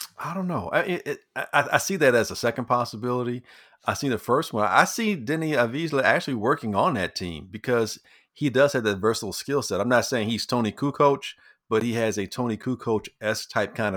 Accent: American